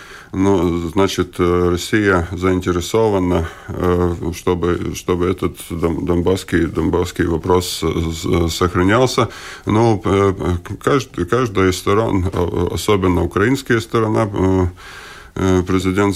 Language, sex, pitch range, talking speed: Russian, male, 90-100 Hz, 75 wpm